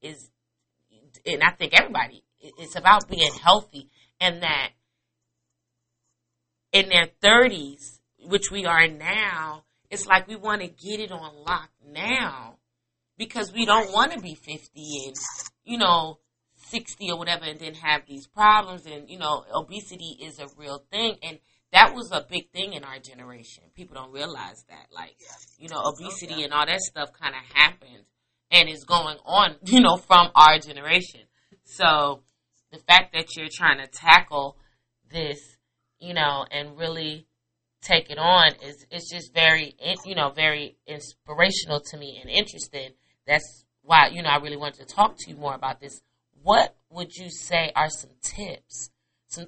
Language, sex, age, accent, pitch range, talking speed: English, female, 30-49, American, 140-180 Hz, 165 wpm